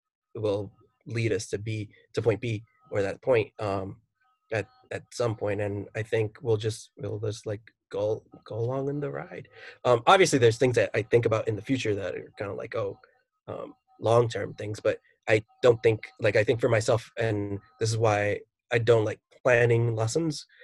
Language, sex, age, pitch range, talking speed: English, male, 20-39, 105-125 Hz, 200 wpm